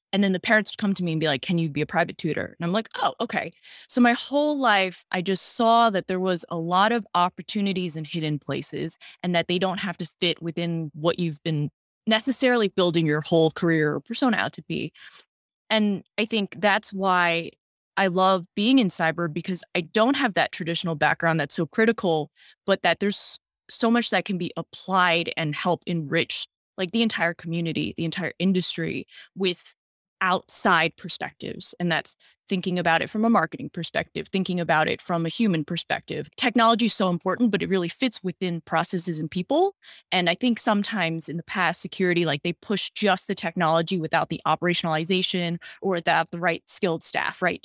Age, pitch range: 20-39, 165-200 Hz